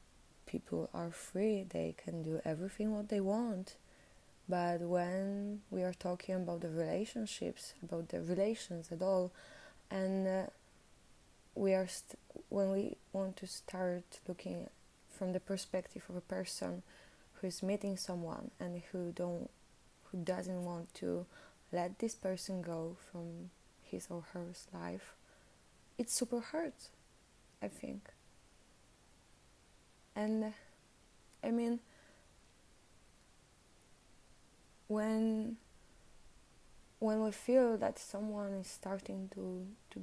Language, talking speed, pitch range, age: Polish, 115 wpm, 175-200 Hz, 20-39